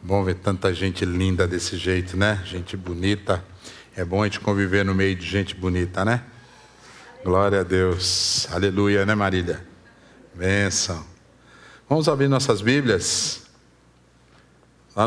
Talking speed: 130 wpm